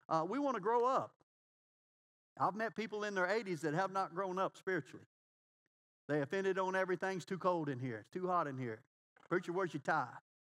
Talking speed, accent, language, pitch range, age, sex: 200 wpm, American, English, 145-190 Hz, 50-69, male